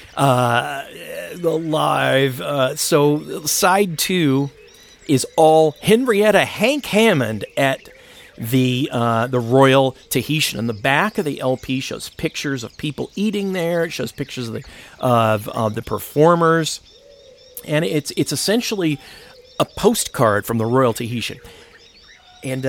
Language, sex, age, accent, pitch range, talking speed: English, male, 40-59, American, 120-170 Hz, 130 wpm